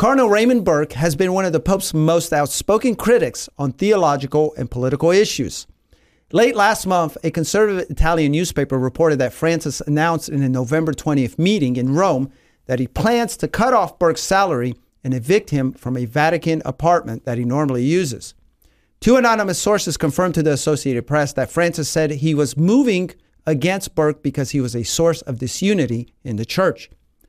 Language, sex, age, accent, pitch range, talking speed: English, male, 40-59, American, 130-175 Hz, 175 wpm